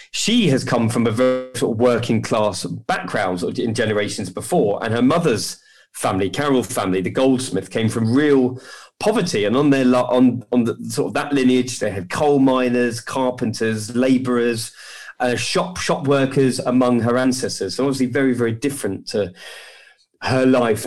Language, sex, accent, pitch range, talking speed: English, male, British, 110-135 Hz, 170 wpm